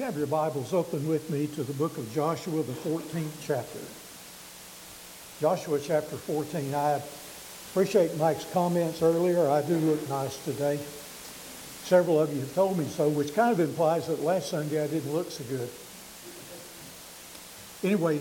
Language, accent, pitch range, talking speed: English, American, 145-175 Hz, 155 wpm